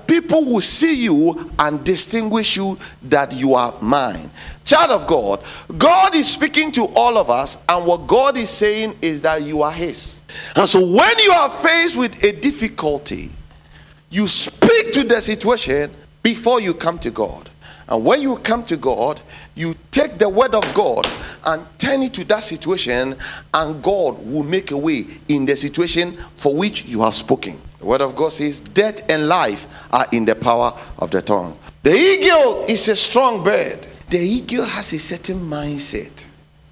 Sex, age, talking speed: male, 50-69, 175 wpm